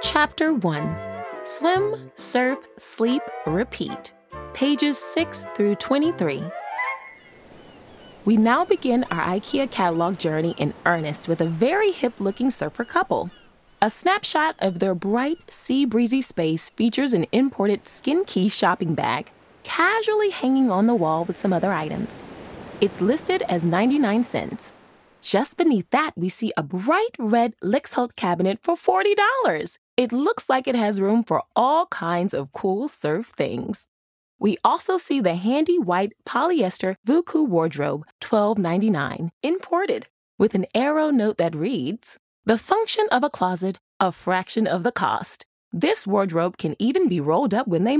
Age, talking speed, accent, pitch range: 20-39, 145 wpm, American, 185-305 Hz